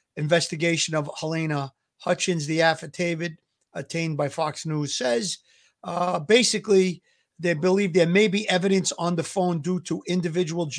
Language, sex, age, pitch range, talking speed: English, male, 50-69, 155-185 Hz, 140 wpm